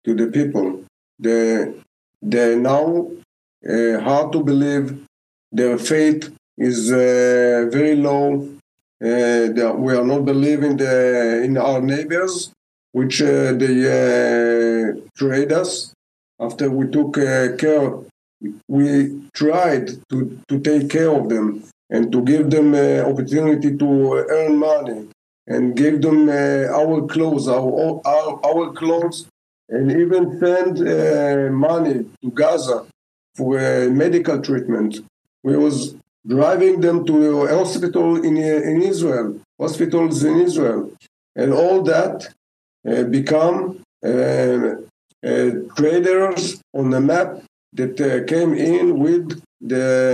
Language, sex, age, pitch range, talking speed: English, male, 50-69, 120-160 Hz, 130 wpm